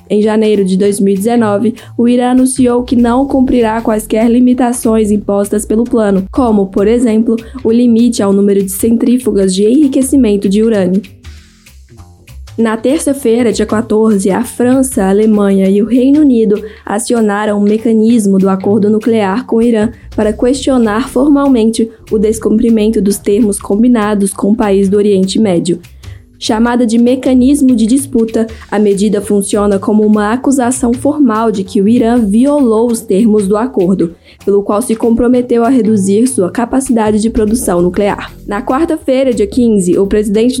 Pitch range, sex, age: 205-245 Hz, female, 10-29